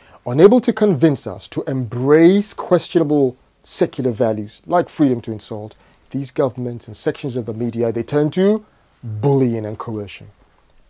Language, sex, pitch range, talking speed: English, male, 125-175 Hz, 145 wpm